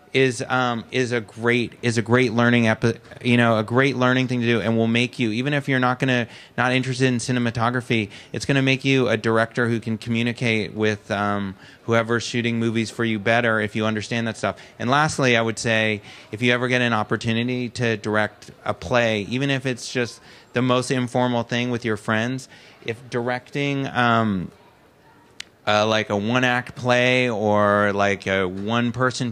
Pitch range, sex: 115-130 Hz, male